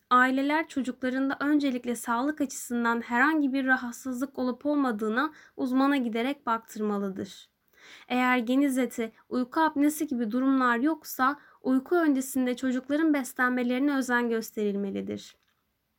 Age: 10-29